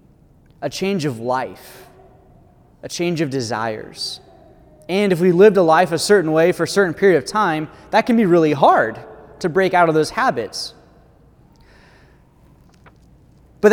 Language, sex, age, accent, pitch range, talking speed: English, male, 20-39, American, 150-195 Hz, 155 wpm